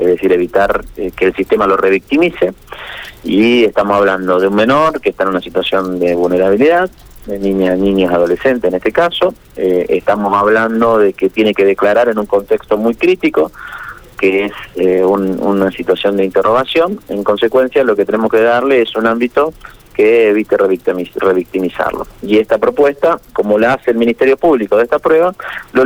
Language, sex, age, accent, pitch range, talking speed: Spanish, male, 30-49, Argentinian, 95-145 Hz, 175 wpm